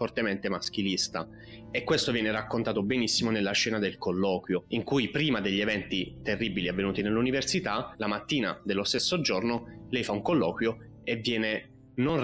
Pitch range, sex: 100-115 Hz, male